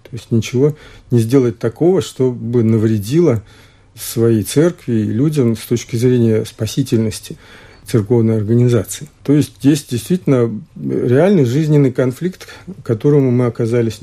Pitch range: 110-140 Hz